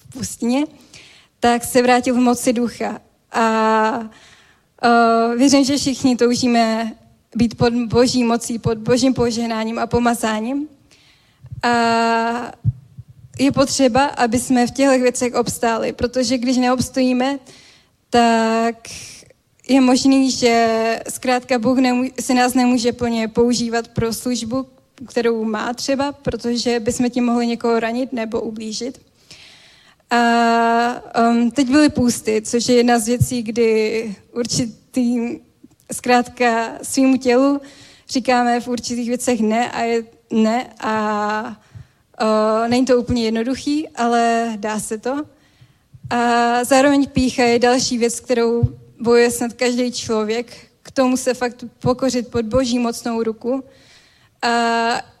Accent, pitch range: native, 230-255 Hz